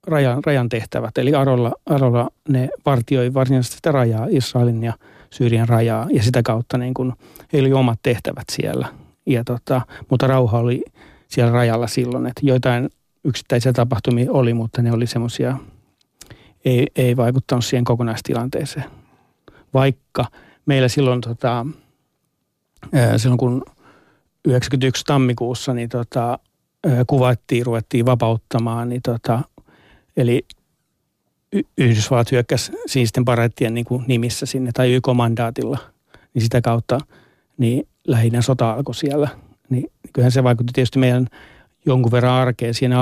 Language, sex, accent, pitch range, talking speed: Finnish, male, native, 120-130 Hz, 125 wpm